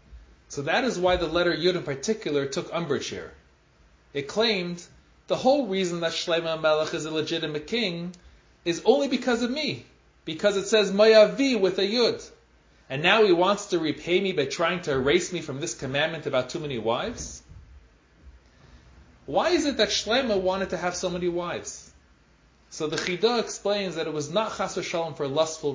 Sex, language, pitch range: male, English, 150-205 Hz